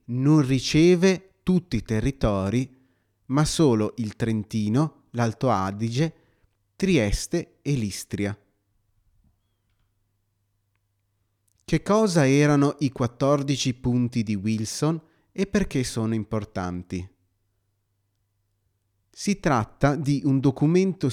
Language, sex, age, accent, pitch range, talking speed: Italian, male, 30-49, native, 100-140 Hz, 90 wpm